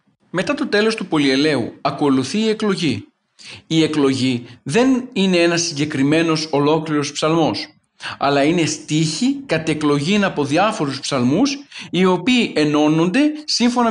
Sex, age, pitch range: male, 40-59, 145-195 Hz